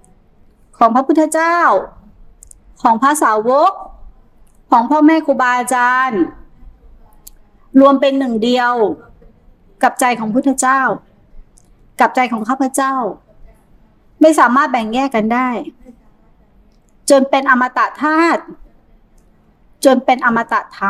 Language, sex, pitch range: Thai, female, 210-275 Hz